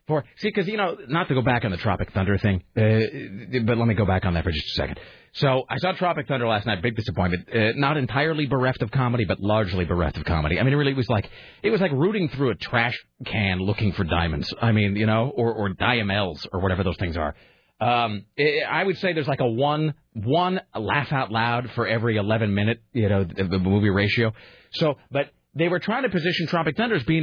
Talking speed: 240 wpm